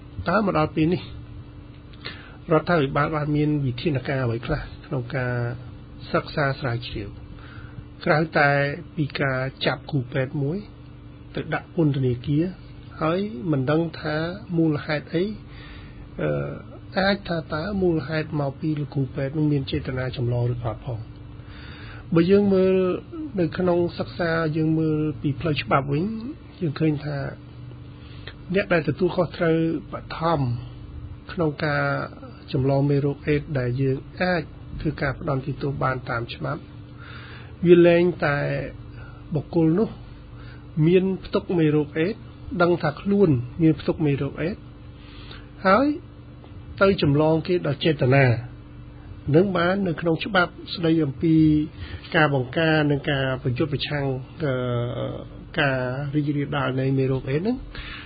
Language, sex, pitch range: English, male, 130-165 Hz